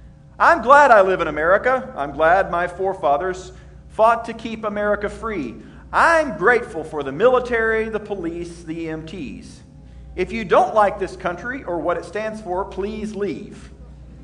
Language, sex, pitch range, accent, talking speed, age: English, male, 160-235 Hz, American, 155 wpm, 40-59